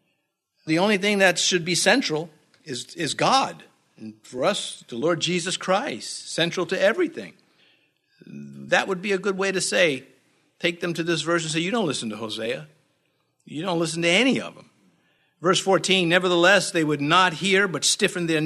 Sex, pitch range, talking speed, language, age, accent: male, 135-185 Hz, 185 wpm, English, 50-69, American